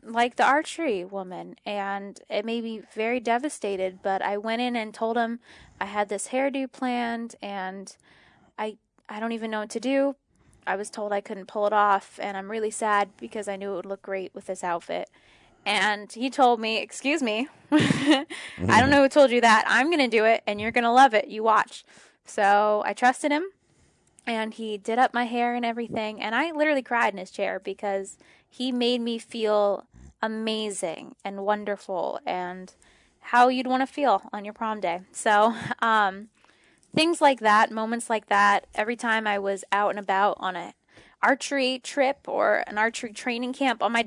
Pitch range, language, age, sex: 205-245 Hz, English, 10-29, female